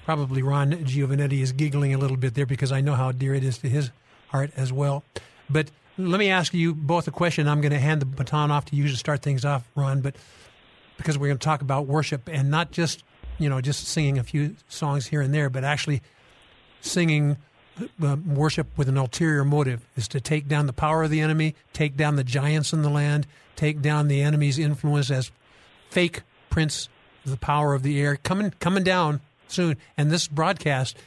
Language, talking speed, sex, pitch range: English, 210 wpm, male, 140-160 Hz